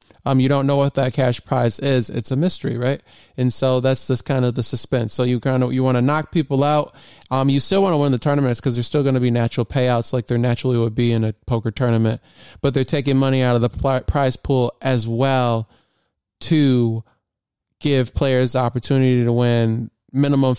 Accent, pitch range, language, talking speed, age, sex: American, 120-135 Hz, English, 220 wpm, 20-39, male